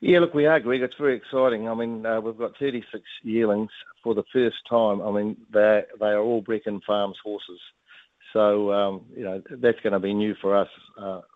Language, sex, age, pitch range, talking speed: English, male, 60-79, 100-115 Hz, 210 wpm